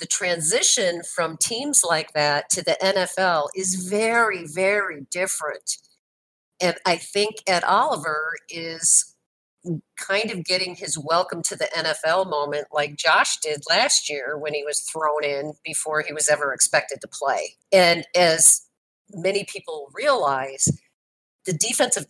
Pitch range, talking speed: 155-205 Hz, 140 wpm